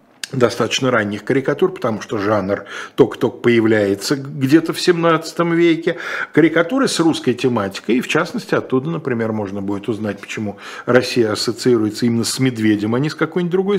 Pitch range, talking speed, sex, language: 105-150 Hz, 150 wpm, male, Russian